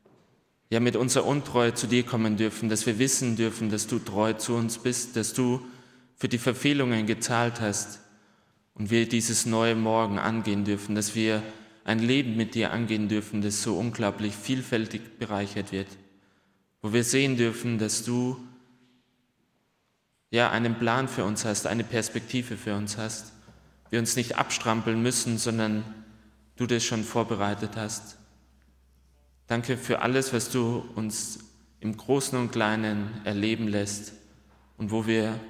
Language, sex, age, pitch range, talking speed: German, male, 20-39, 105-120 Hz, 150 wpm